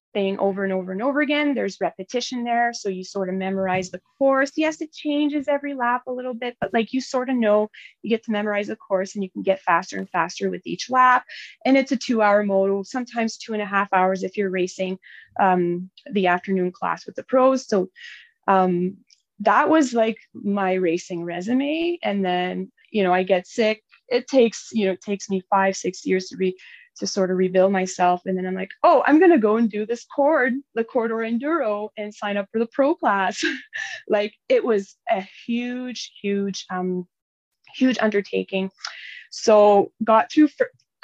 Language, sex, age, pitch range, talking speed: English, female, 20-39, 190-255 Hz, 195 wpm